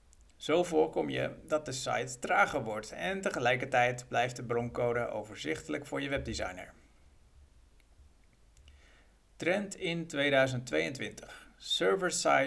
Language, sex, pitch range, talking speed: Dutch, male, 110-155 Hz, 95 wpm